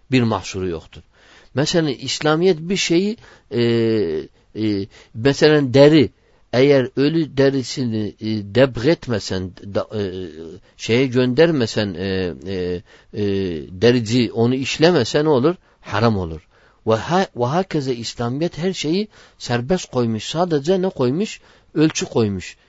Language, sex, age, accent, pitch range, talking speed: Turkish, male, 60-79, native, 105-155 Hz, 115 wpm